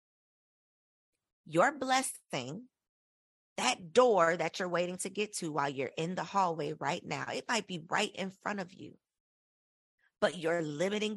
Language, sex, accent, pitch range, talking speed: English, female, American, 175-225 Hz, 155 wpm